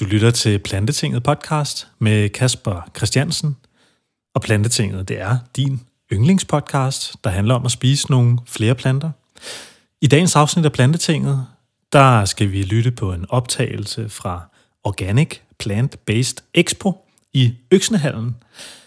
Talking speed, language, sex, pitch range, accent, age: 130 wpm, Danish, male, 110-145 Hz, native, 30-49